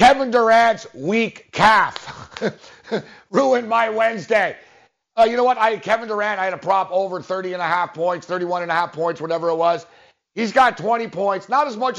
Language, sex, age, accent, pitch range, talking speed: English, male, 50-69, American, 180-230 Hz, 190 wpm